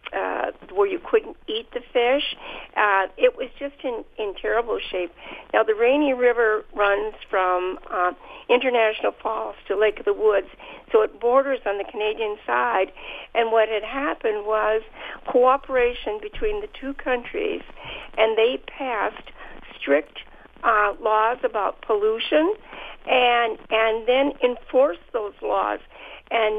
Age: 50-69